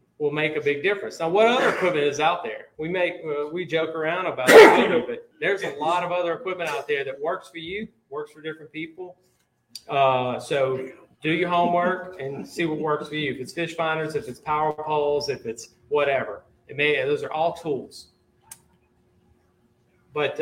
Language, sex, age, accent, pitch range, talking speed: English, male, 40-59, American, 135-175 Hz, 195 wpm